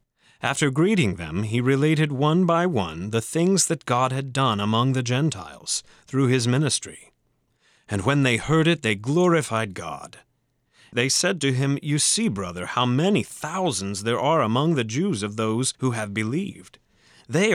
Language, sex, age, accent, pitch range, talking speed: English, male, 30-49, American, 105-155 Hz, 170 wpm